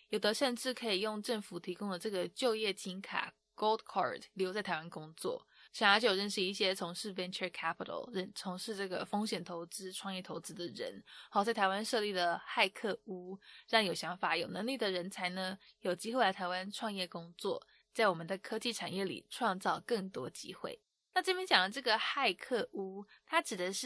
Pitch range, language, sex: 185-230 Hz, English, female